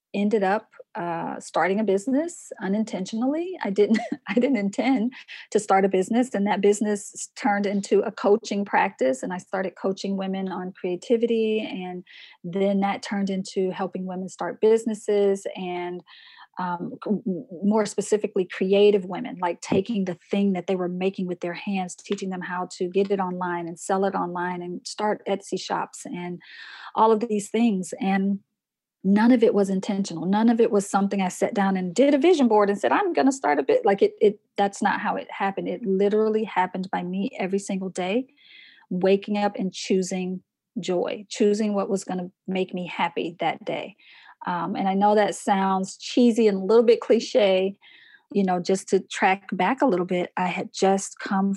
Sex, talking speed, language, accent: female, 185 wpm, English, American